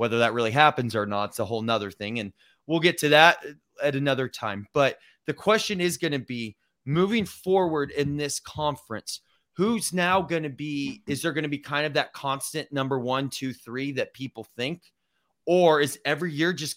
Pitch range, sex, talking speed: 125-150 Hz, male, 205 wpm